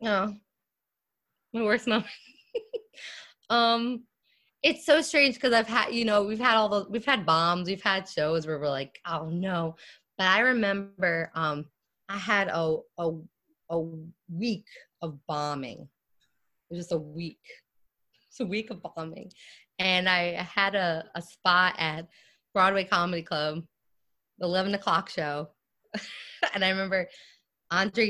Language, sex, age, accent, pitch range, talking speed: English, female, 20-39, American, 165-215 Hz, 145 wpm